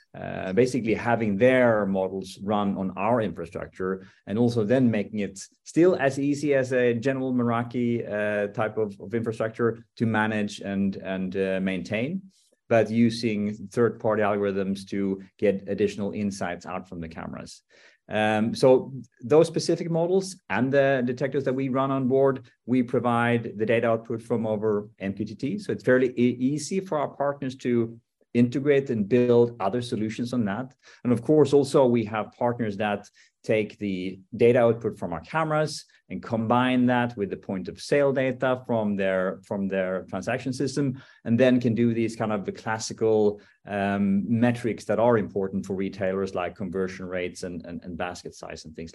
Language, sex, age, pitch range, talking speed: English, male, 30-49, 100-125 Hz, 165 wpm